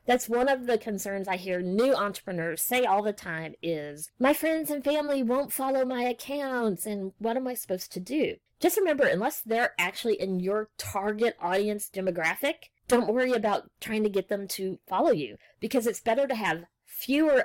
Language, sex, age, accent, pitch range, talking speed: English, female, 40-59, American, 185-245 Hz, 190 wpm